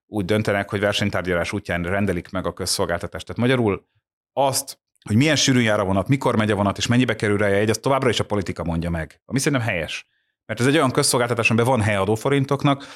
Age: 30-49